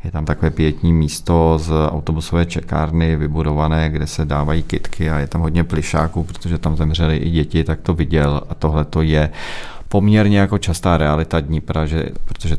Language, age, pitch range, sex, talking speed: Czech, 40-59, 75-85 Hz, male, 165 wpm